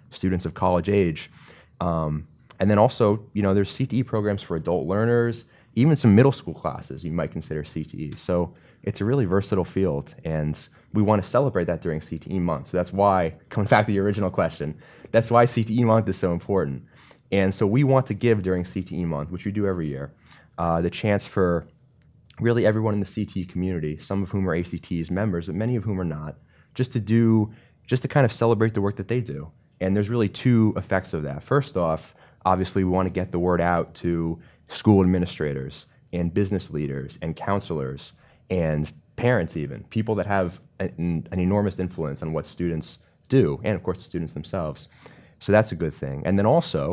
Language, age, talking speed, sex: English, 20-39, 200 wpm, male